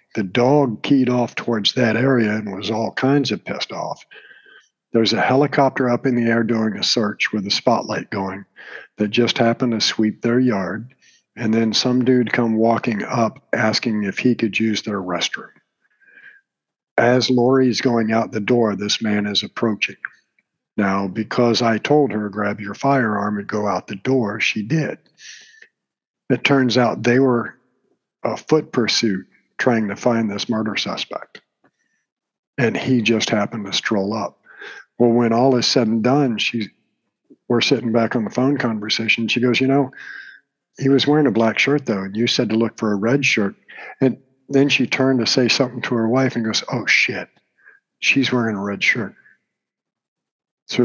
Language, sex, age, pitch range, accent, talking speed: English, male, 50-69, 110-130 Hz, American, 175 wpm